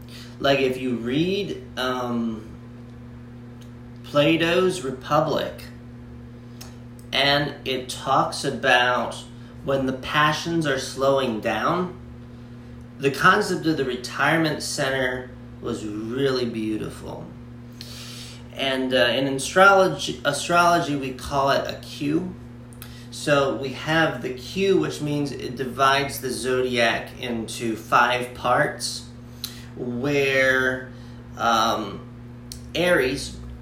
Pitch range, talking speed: 120-145 Hz, 95 wpm